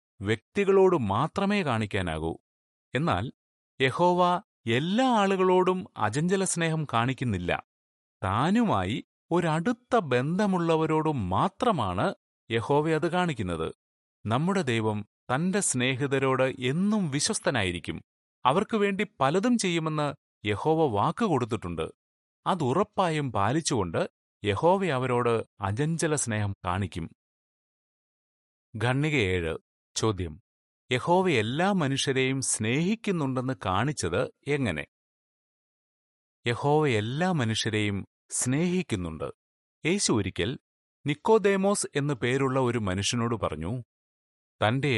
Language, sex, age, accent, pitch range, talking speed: Malayalam, male, 30-49, native, 100-165 Hz, 70 wpm